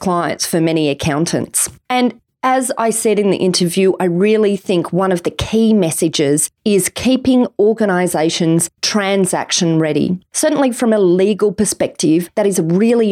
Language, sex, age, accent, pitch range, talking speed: English, female, 30-49, Australian, 175-225 Hz, 150 wpm